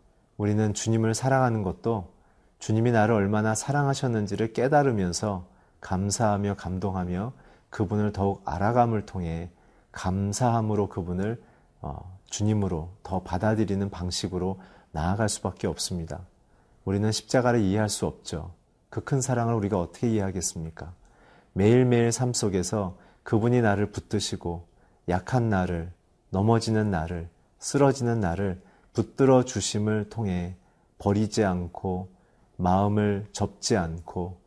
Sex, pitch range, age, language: male, 95-115 Hz, 40-59, Korean